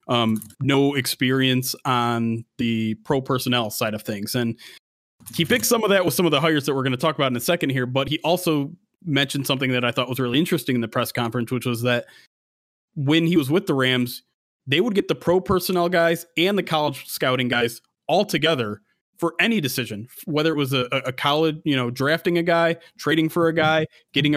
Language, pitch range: English, 130-170 Hz